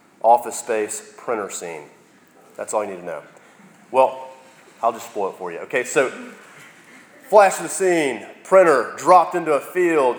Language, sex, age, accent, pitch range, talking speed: English, male, 30-49, American, 125-175 Hz, 165 wpm